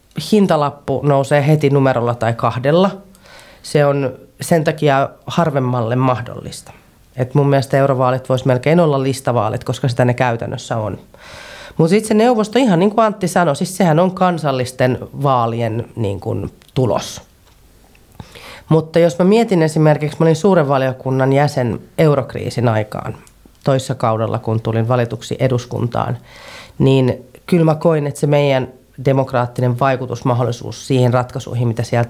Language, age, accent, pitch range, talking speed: Finnish, 30-49, native, 120-155 Hz, 135 wpm